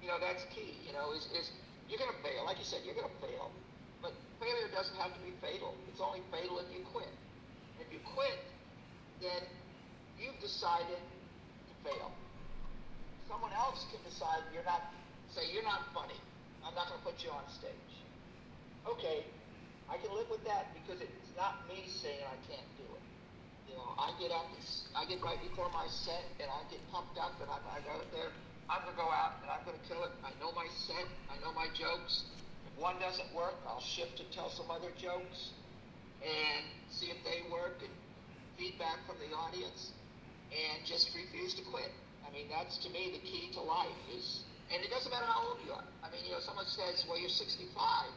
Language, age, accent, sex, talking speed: English, 50-69, American, male, 205 wpm